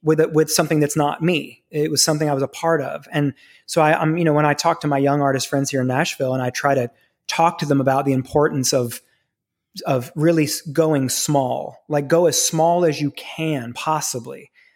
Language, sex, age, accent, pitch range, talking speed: English, male, 30-49, American, 140-165 Hz, 225 wpm